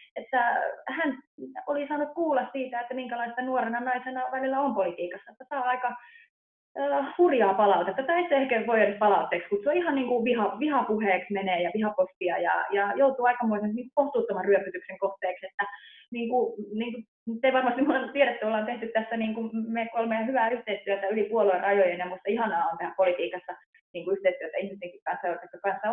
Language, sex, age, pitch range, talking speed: Finnish, female, 20-39, 190-245 Hz, 170 wpm